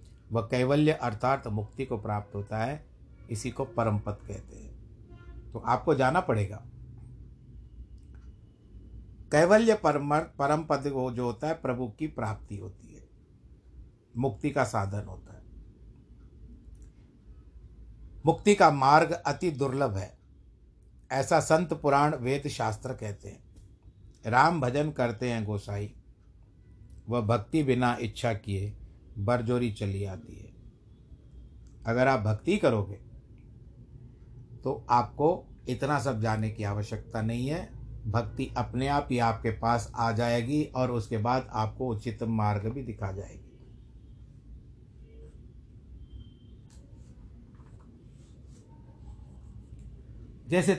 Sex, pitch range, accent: male, 105-135 Hz, native